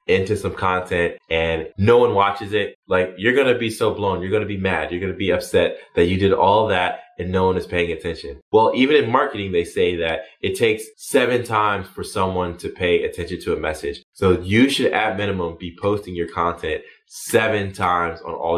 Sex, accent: male, American